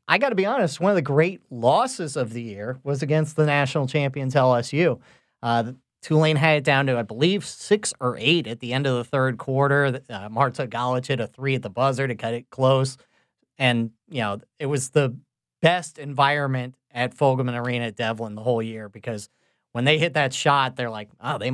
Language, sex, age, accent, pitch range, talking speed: English, male, 40-59, American, 130-165 Hz, 210 wpm